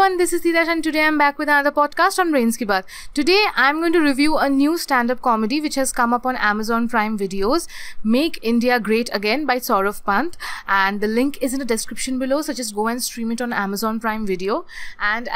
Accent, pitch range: Indian, 220-290 Hz